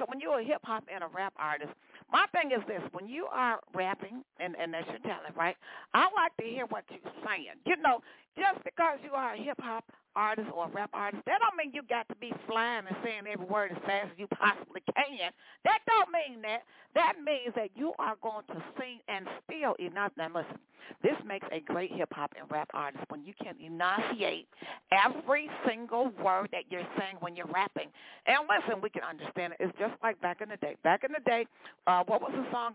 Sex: female